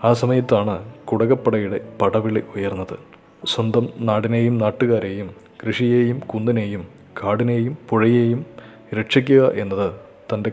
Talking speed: 85 wpm